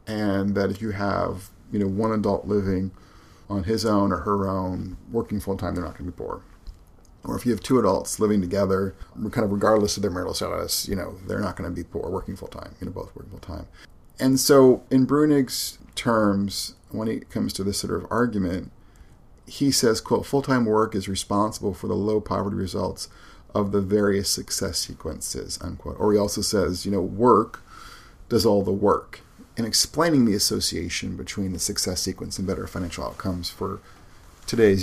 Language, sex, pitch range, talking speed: English, male, 95-115 Hz, 190 wpm